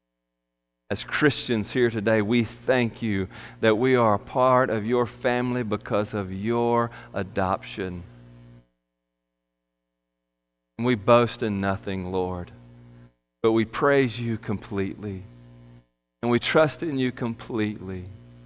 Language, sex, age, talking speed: English, male, 40-59, 115 wpm